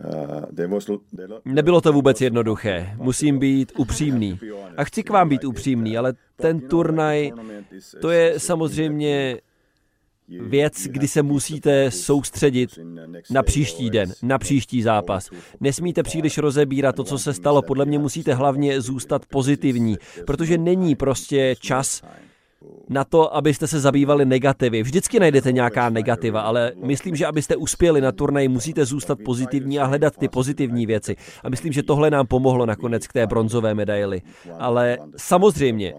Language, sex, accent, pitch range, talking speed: Czech, male, native, 120-145 Hz, 140 wpm